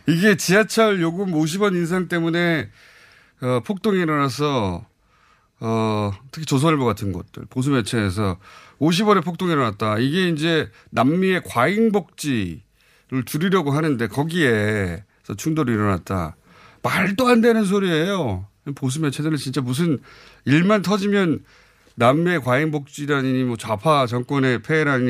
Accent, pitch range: native, 105-160 Hz